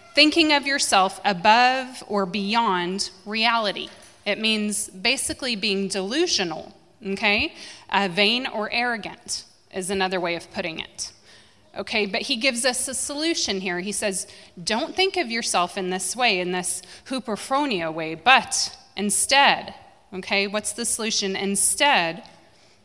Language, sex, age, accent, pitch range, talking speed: English, female, 30-49, American, 185-235 Hz, 135 wpm